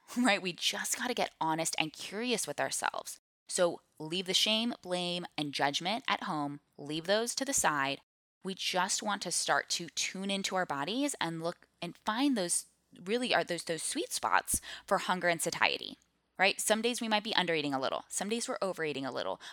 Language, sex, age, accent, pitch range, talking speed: English, female, 10-29, American, 155-210 Hz, 195 wpm